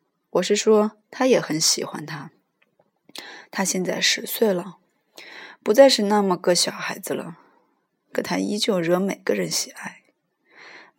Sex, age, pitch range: female, 20-39, 180-230 Hz